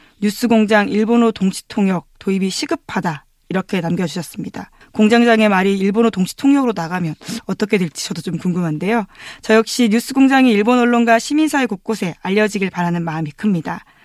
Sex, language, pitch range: female, Korean, 185-230 Hz